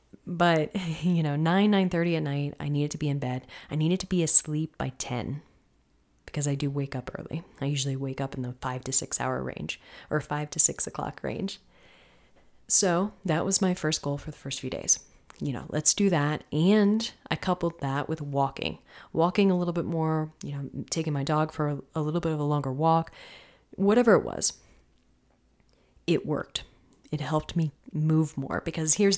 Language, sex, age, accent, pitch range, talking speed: English, female, 30-49, American, 145-170 Hz, 195 wpm